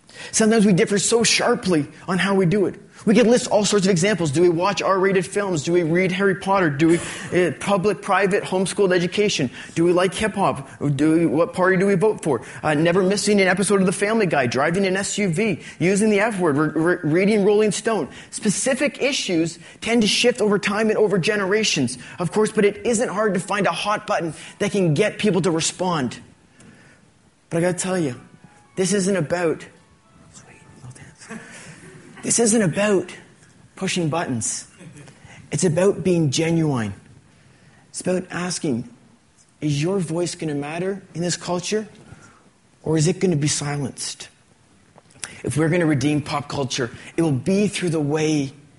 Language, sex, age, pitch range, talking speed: English, male, 30-49, 155-205 Hz, 175 wpm